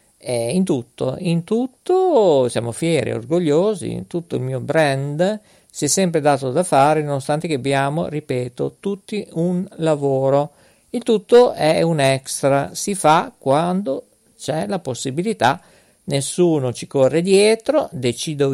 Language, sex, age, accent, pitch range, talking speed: Italian, male, 50-69, native, 130-185 Hz, 135 wpm